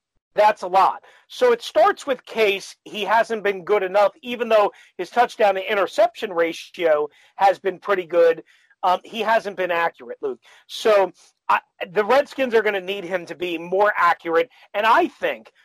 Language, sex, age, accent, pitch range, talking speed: English, male, 40-59, American, 185-240 Hz, 175 wpm